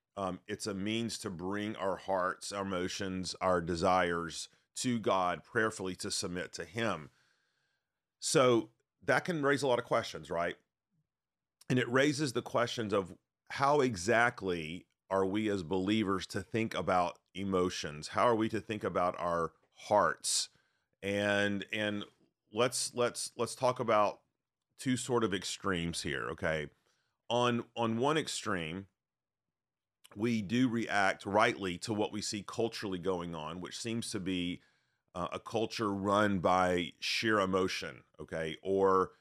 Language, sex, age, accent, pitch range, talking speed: English, male, 40-59, American, 90-115 Hz, 140 wpm